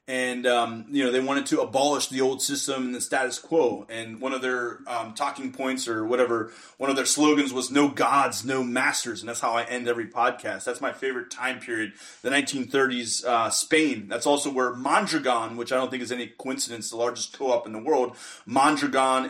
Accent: American